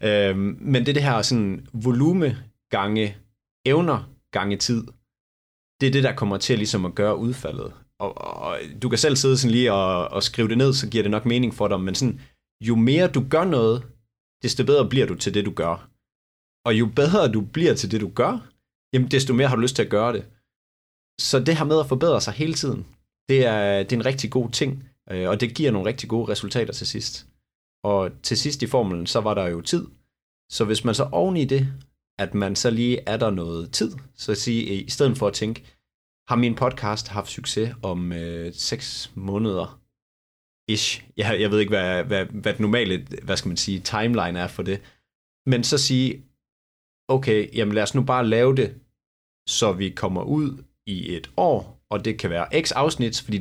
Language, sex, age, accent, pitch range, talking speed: Danish, male, 30-49, native, 100-130 Hz, 205 wpm